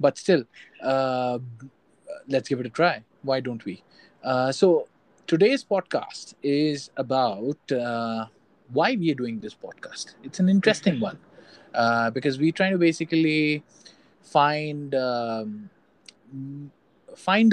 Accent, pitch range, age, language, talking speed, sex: Indian, 120-160 Hz, 20-39, English, 130 wpm, male